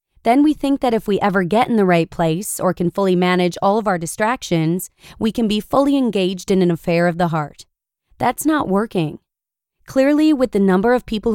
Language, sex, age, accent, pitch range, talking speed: English, female, 20-39, American, 175-225 Hz, 210 wpm